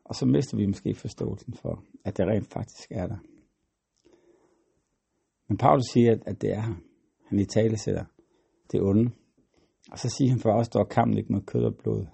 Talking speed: 195 wpm